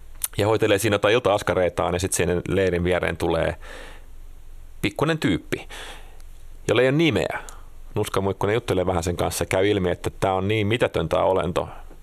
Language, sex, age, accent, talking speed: Finnish, male, 30-49, native, 150 wpm